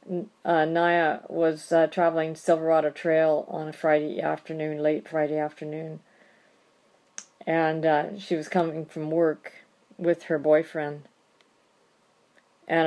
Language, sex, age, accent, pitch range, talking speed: English, female, 50-69, American, 160-190 Hz, 115 wpm